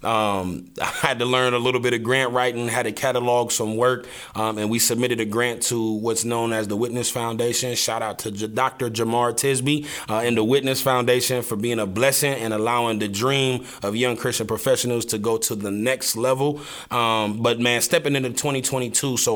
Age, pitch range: 30-49, 110-125 Hz